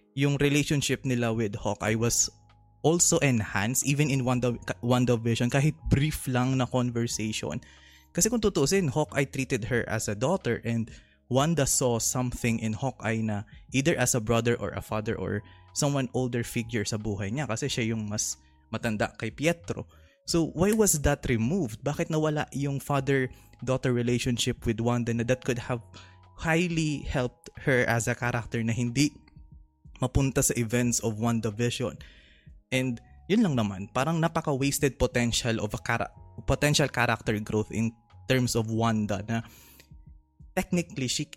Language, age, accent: Filipino, 20-39, native